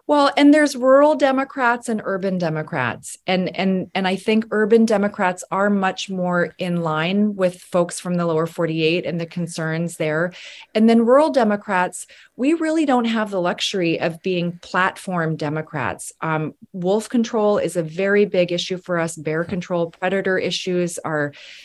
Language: English